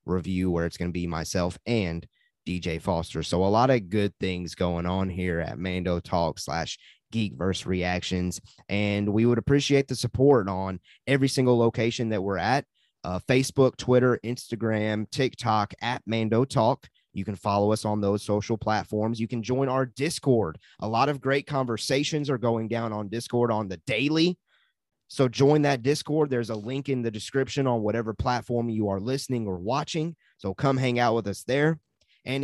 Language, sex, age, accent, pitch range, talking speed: English, male, 20-39, American, 105-135 Hz, 180 wpm